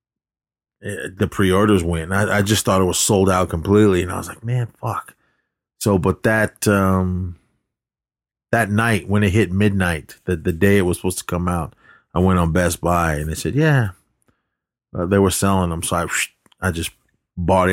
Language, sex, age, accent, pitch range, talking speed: English, male, 30-49, American, 85-105 Hz, 190 wpm